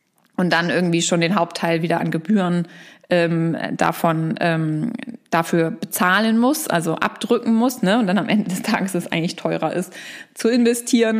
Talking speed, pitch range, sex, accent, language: 170 wpm, 175-225 Hz, female, German, German